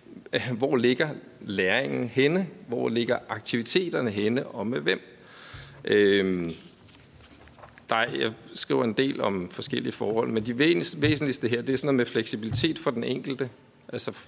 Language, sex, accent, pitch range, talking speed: Danish, male, native, 120-150 Hz, 145 wpm